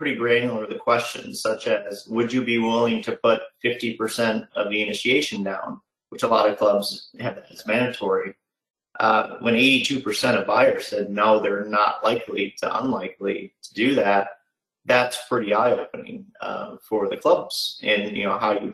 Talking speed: 170 wpm